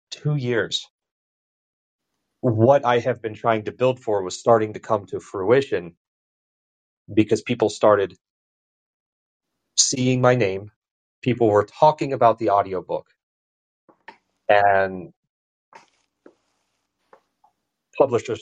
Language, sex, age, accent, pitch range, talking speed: English, male, 40-59, American, 95-130 Hz, 100 wpm